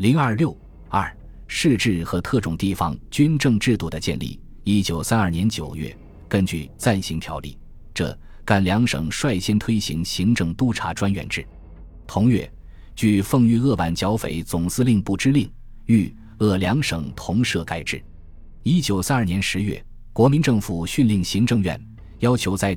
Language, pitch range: Chinese, 85-115 Hz